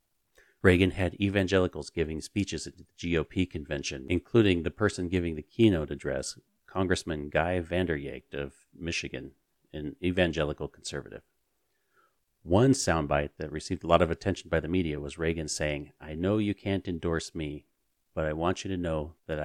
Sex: male